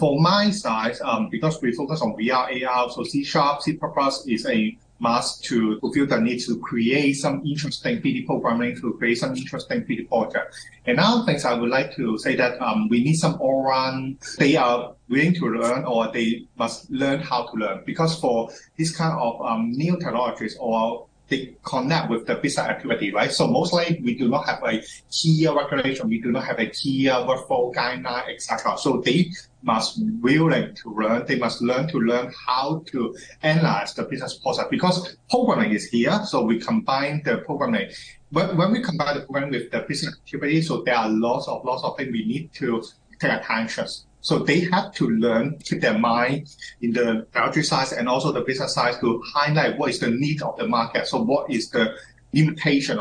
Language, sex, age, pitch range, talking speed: English, male, 30-49, 120-160 Hz, 200 wpm